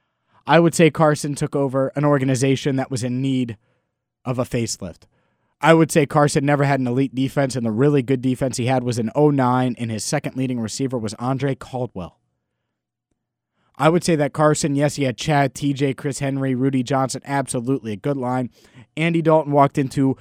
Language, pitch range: English, 120-150 Hz